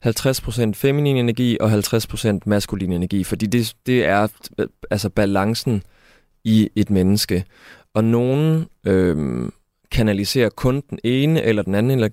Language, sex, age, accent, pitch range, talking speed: Danish, male, 20-39, native, 105-120 Hz, 130 wpm